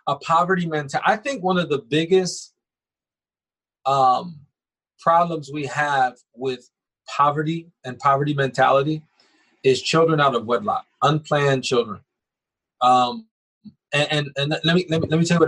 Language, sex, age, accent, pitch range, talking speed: English, male, 30-49, American, 135-170 Hz, 145 wpm